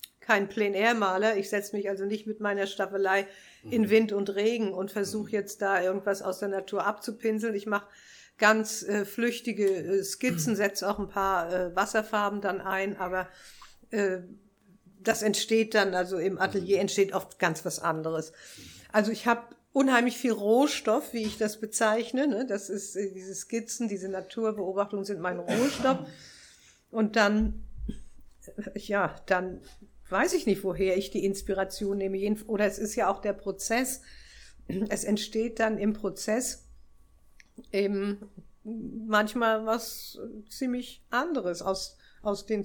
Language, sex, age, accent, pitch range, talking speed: German, female, 50-69, German, 195-220 Hz, 145 wpm